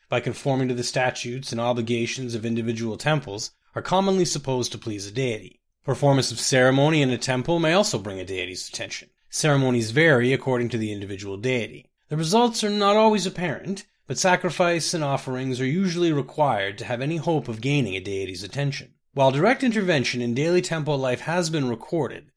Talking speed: 180 wpm